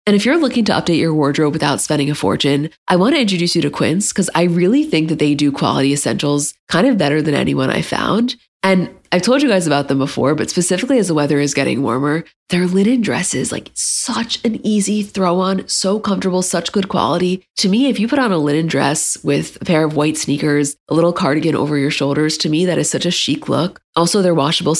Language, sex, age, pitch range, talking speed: English, female, 20-39, 150-190 Hz, 235 wpm